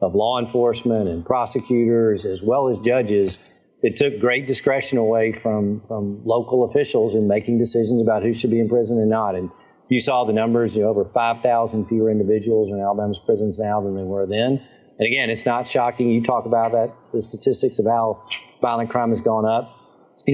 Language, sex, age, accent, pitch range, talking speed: English, male, 50-69, American, 110-130 Hz, 200 wpm